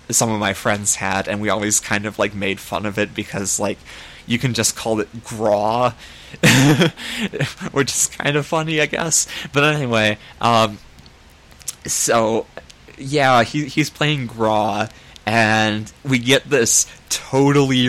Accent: American